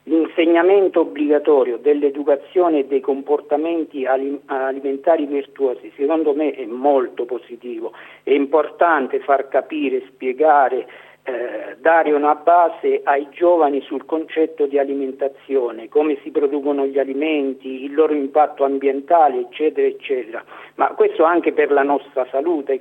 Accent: native